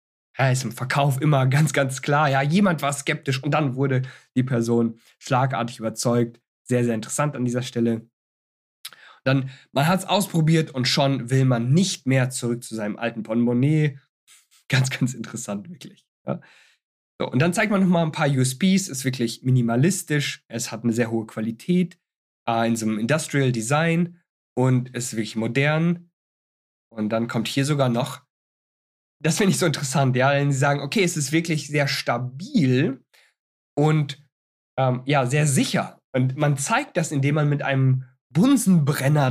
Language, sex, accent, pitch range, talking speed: German, male, German, 125-155 Hz, 165 wpm